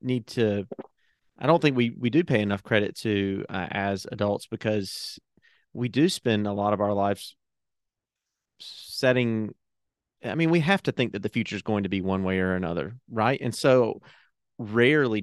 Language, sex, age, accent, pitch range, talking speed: English, male, 30-49, American, 100-120 Hz, 180 wpm